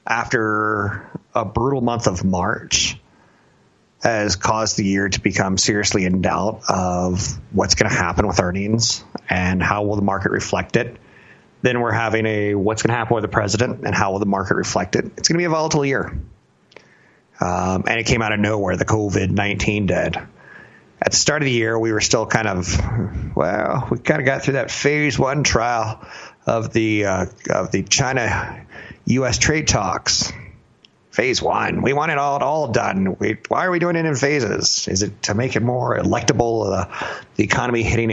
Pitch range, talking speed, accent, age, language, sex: 100-120 Hz, 190 wpm, American, 30-49, English, male